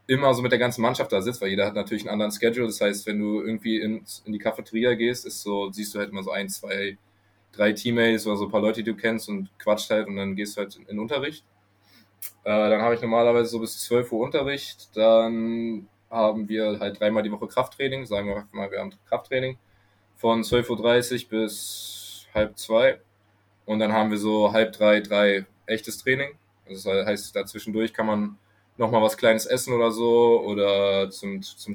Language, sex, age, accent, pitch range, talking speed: German, male, 20-39, German, 105-115 Hz, 210 wpm